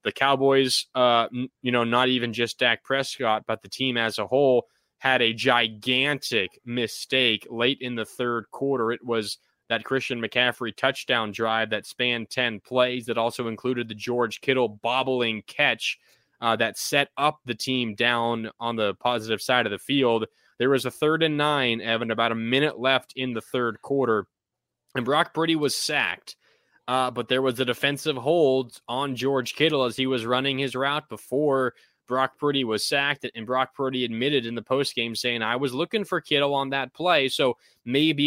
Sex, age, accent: male, 20-39, American